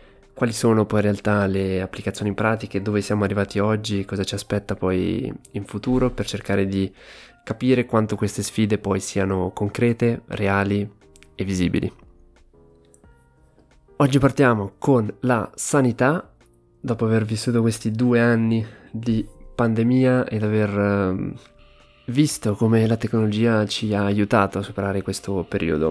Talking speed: 130 wpm